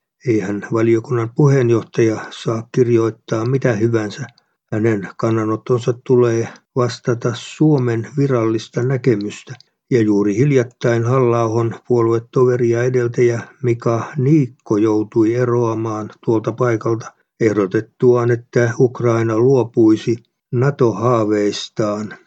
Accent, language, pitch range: native, Finnish, 115-125 Hz